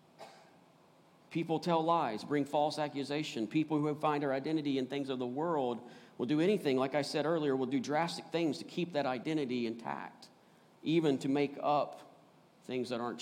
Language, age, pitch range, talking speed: English, 50-69, 145-175 Hz, 180 wpm